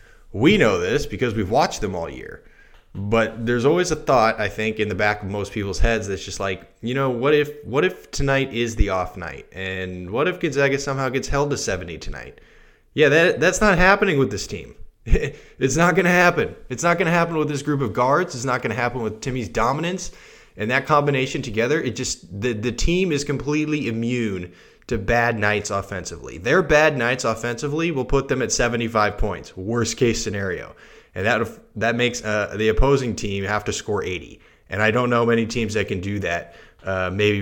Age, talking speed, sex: 20-39, 205 wpm, male